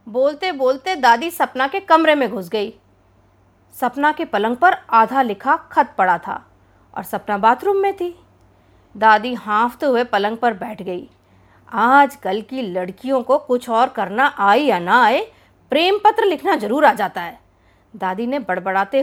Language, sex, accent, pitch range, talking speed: Hindi, female, native, 205-335 Hz, 165 wpm